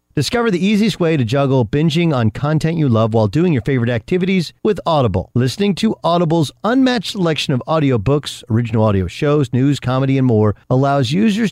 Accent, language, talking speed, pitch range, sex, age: American, English, 175 wpm, 115-160 Hz, male, 50-69